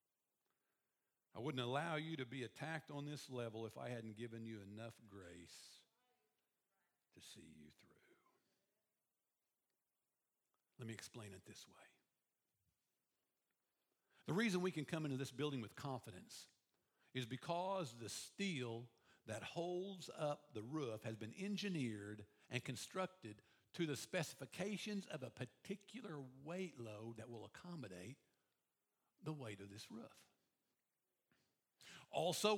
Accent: American